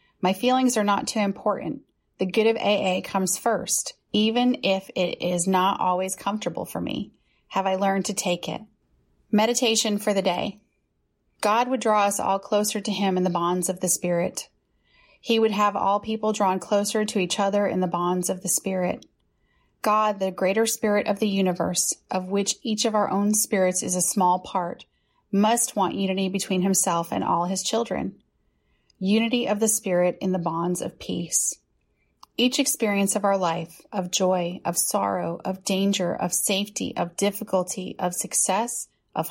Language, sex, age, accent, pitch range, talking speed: English, female, 30-49, American, 180-210 Hz, 175 wpm